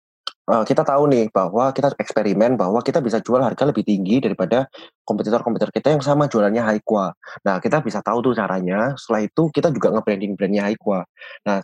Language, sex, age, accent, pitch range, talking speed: Indonesian, male, 20-39, native, 95-115 Hz, 180 wpm